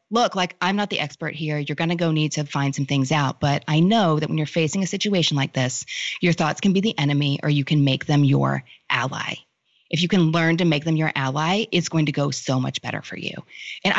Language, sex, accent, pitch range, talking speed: English, female, American, 145-205 Hz, 255 wpm